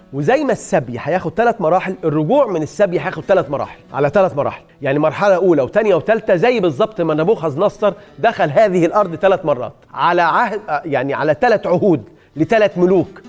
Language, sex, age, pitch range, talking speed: Persian, male, 40-59, 160-220 Hz, 165 wpm